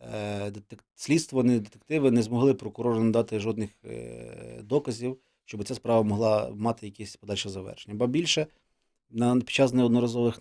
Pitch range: 110-130 Hz